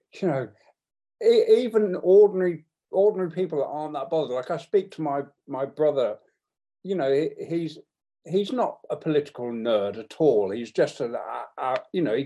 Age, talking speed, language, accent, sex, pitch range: 50-69, 170 wpm, English, British, male, 140-205 Hz